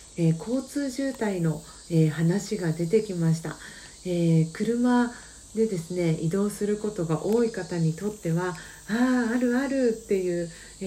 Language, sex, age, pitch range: Japanese, female, 40-59, 170-230 Hz